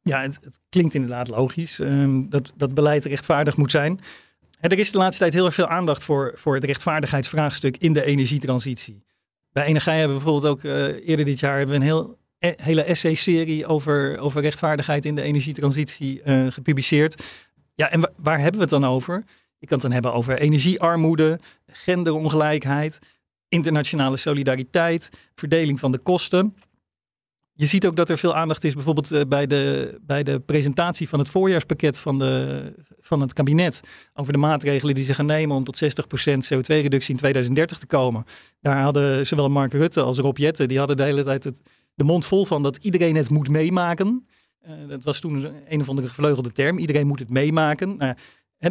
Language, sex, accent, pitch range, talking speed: Dutch, male, Dutch, 140-165 Hz, 185 wpm